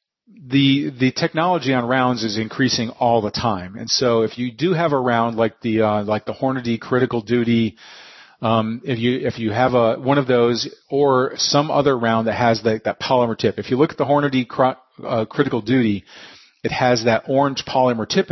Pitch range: 115-140 Hz